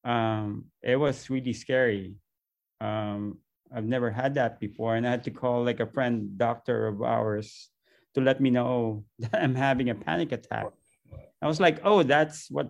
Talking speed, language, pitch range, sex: 180 wpm, English, 120-145 Hz, male